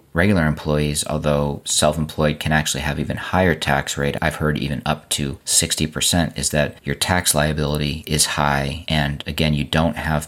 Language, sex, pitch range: English, male, 75-85 Hz